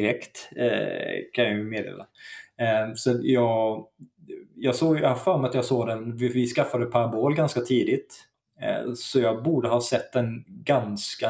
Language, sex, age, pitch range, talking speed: Swedish, male, 20-39, 110-130 Hz, 165 wpm